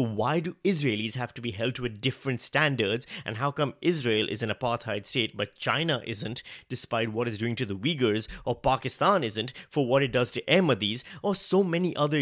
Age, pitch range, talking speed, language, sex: 30-49, 115-155 Hz, 205 wpm, English, male